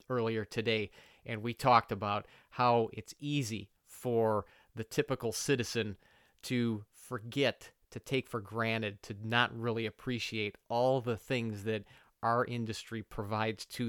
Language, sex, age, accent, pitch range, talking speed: English, male, 40-59, American, 105-125 Hz, 135 wpm